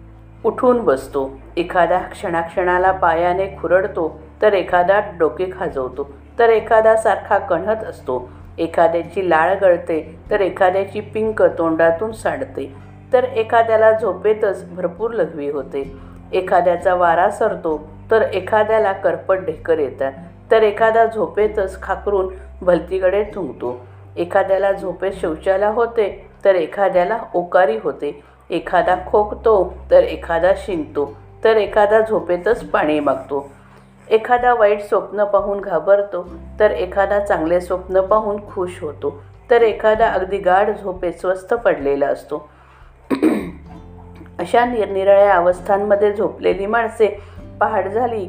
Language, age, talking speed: Marathi, 50-69, 110 wpm